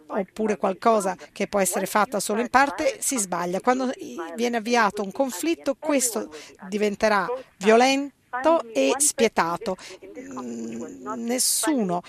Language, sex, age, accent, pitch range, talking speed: Italian, female, 40-59, native, 200-255 Hz, 110 wpm